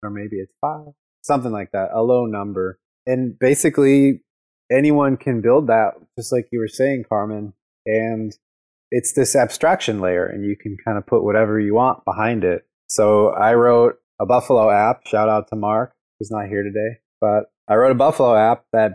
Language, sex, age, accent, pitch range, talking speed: English, male, 20-39, American, 100-115 Hz, 185 wpm